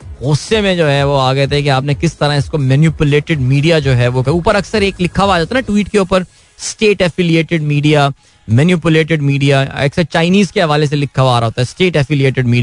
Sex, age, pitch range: male, 20-39, 135-175 Hz